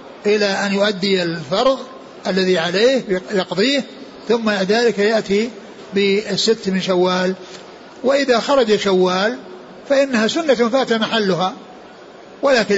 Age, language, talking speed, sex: 60-79, Arabic, 100 wpm, male